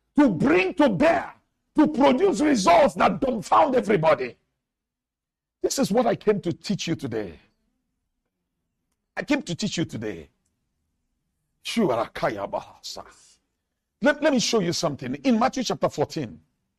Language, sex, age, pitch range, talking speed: English, male, 50-69, 185-270 Hz, 130 wpm